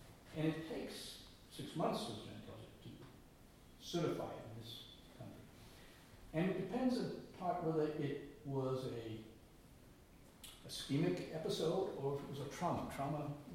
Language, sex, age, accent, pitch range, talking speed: English, male, 60-79, American, 125-155 Hz, 120 wpm